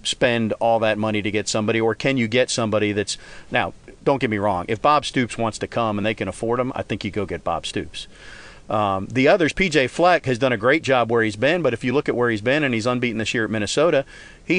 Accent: American